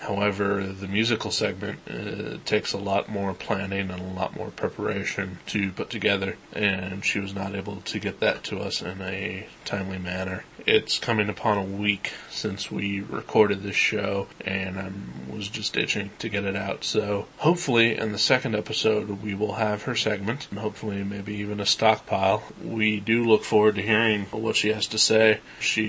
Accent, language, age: American, English, 20-39